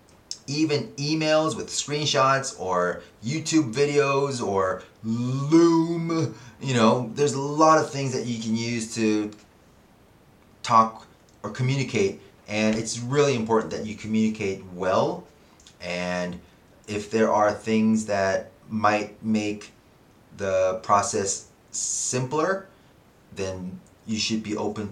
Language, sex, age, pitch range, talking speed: English, male, 30-49, 105-145 Hz, 115 wpm